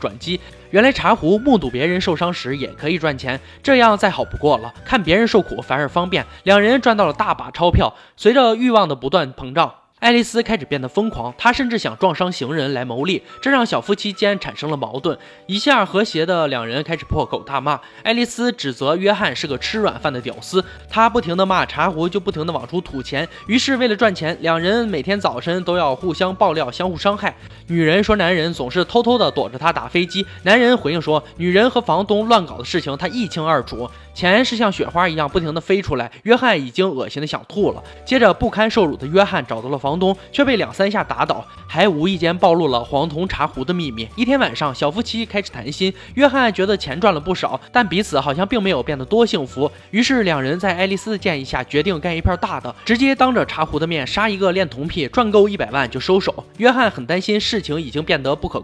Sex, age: male, 20-39